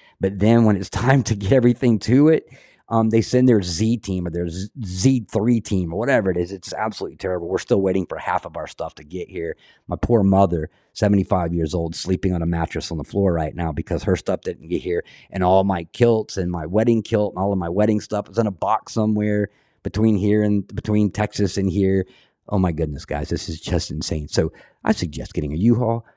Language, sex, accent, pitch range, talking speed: English, male, American, 80-105 Hz, 225 wpm